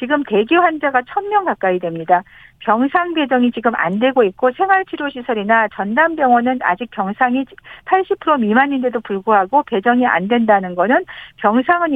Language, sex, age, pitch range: Korean, female, 50-69, 220-300 Hz